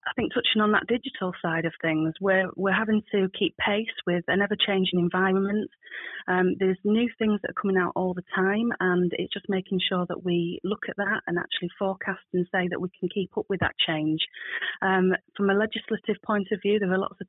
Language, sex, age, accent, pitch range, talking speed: English, female, 30-49, British, 180-210 Hz, 220 wpm